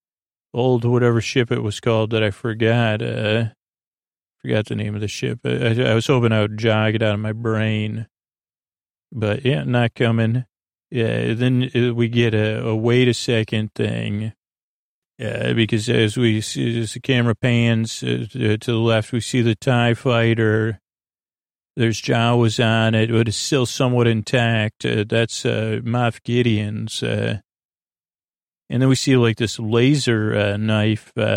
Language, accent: English, American